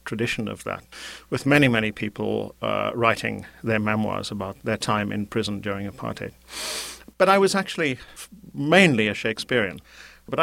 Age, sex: 50-69, male